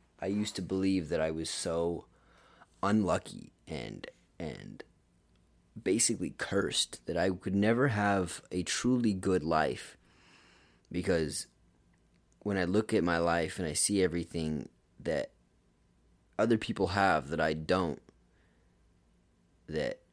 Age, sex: 30-49, male